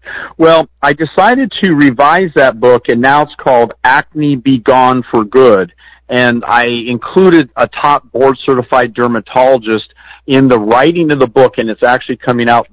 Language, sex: English, male